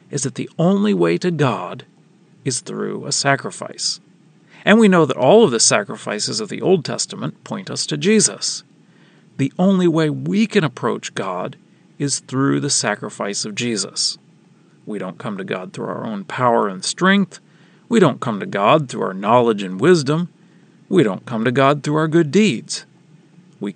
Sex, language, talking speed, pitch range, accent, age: male, English, 180 wpm, 135-180 Hz, American, 40-59